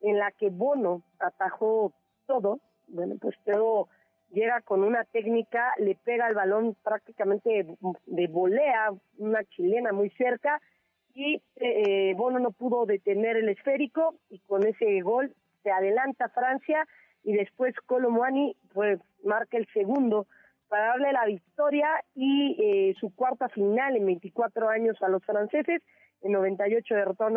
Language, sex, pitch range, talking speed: Spanish, female, 200-255 Hz, 140 wpm